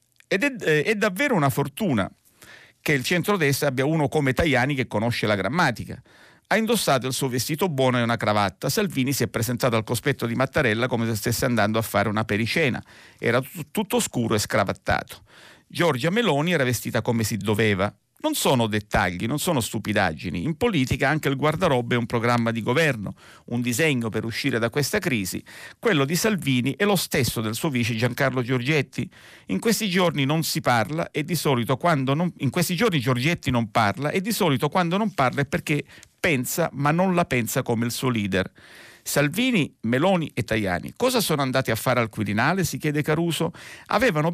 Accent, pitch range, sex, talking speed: native, 120-170 Hz, male, 170 wpm